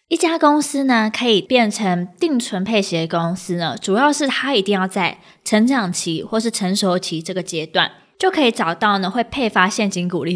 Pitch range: 185-255 Hz